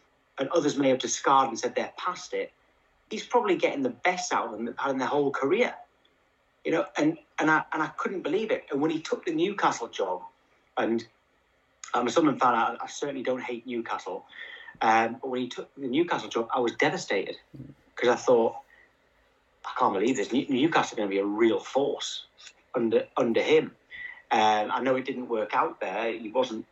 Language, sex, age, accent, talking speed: English, male, 30-49, British, 200 wpm